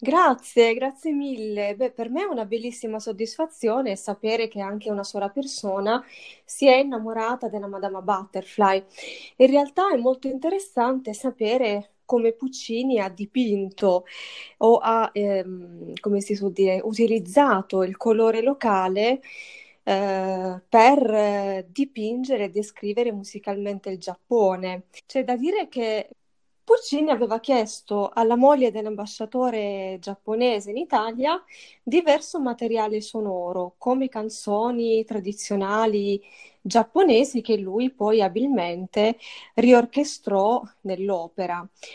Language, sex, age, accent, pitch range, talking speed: Italian, female, 30-49, native, 200-250 Hz, 110 wpm